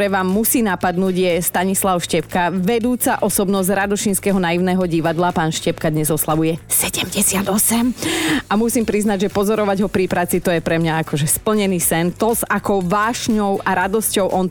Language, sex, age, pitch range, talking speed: Slovak, female, 30-49, 175-215 Hz, 155 wpm